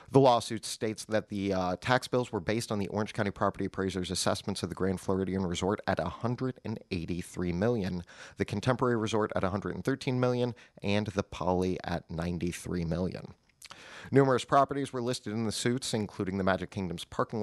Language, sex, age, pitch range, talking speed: English, male, 30-49, 95-115 Hz, 170 wpm